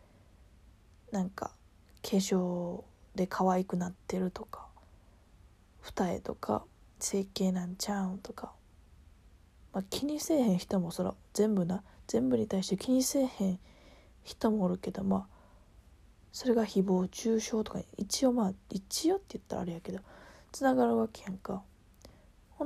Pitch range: 160-215 Hz